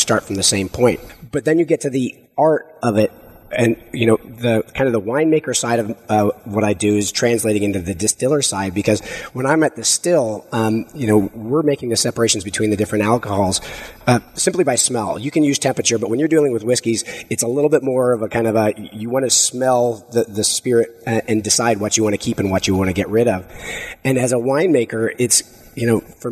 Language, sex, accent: English, male, American